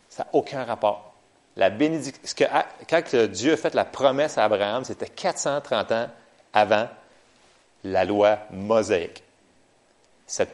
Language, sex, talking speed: French, male, 125 wpm